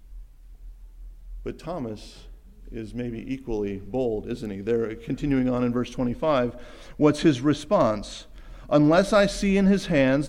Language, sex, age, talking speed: English, male, 50-69, 135 wpm